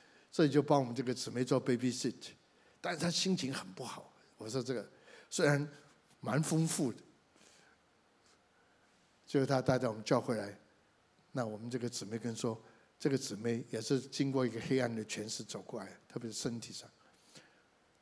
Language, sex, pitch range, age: Chinese, male, 120-160 Hz, 60-79